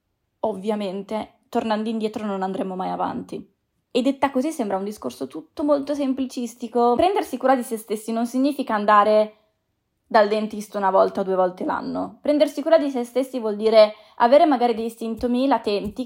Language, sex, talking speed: Italian, female, 165 wpm